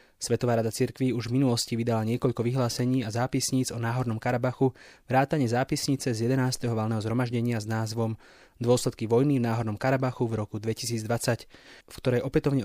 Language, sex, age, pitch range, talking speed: English, male, 20-39, 115-135 Hz, 155 wpm